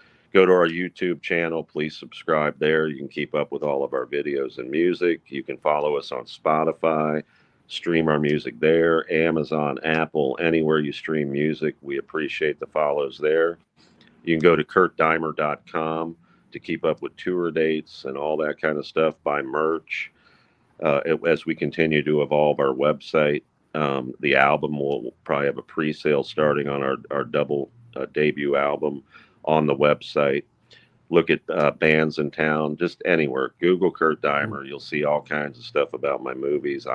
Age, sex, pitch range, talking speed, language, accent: 40-59, male, 70-80 Hz, 170 wpm, English, American